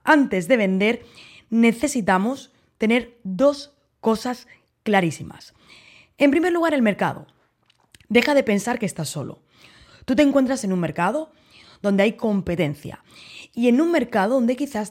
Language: Spanish